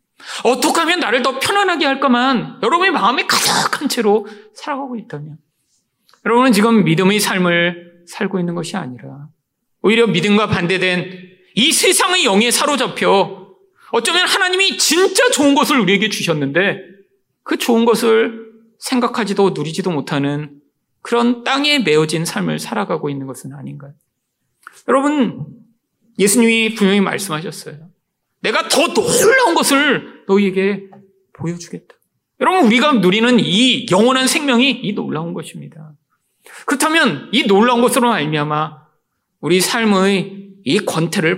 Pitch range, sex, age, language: 175-255 Hz, male, 40-59, Korean